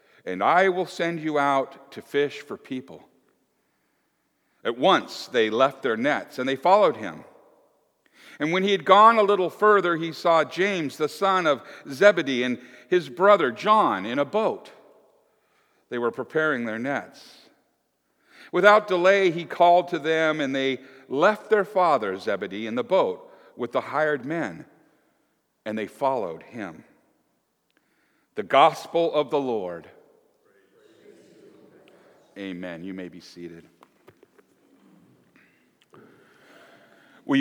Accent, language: American, English